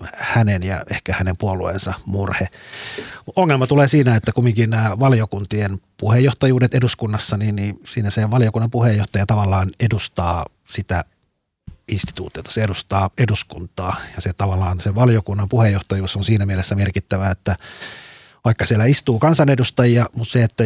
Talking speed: 130 wpm